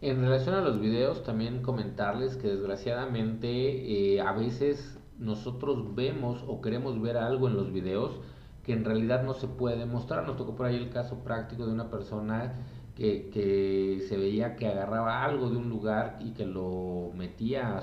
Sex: male